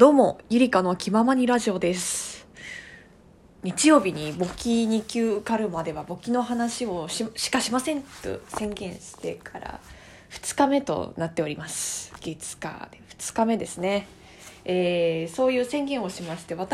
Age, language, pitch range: 20-39, Japanese, 180-265 Hz